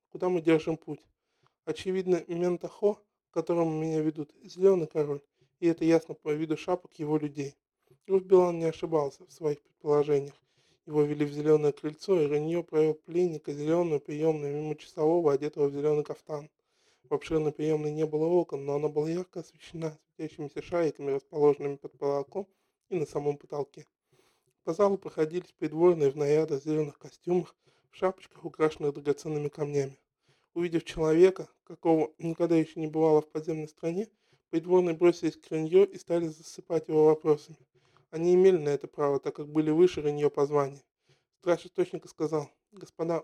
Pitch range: 150-170 Hz